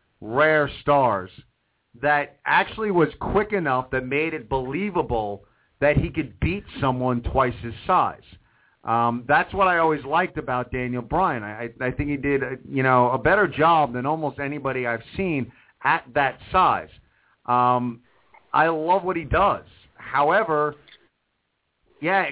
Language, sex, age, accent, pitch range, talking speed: English, male, 40-59, American, 115-155 Hz, 145 wpm